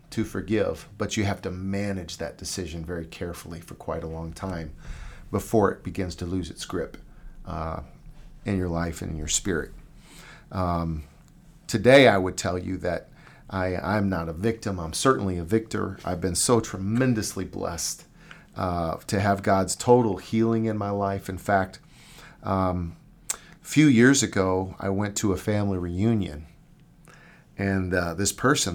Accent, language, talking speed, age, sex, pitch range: American, English, 160 wpm, 40-59, male, 85-105 Hz